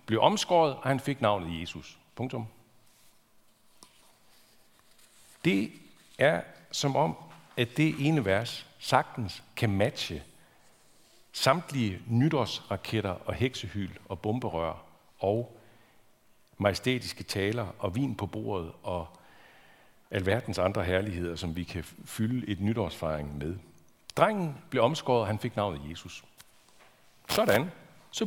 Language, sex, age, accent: Danish, male, 60-79, native